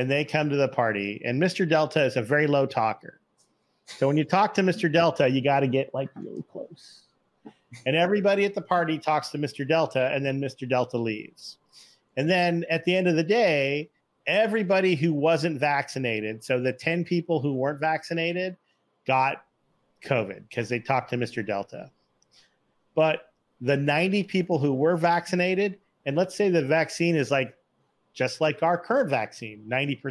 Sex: male